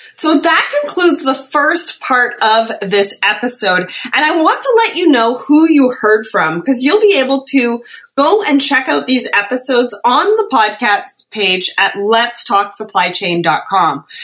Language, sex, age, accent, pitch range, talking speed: English, female, 30-49, American, 210-285 Hz, 155 wpm